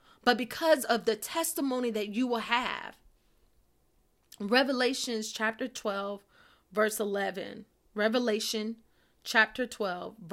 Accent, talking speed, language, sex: American, 100 wpm, English, female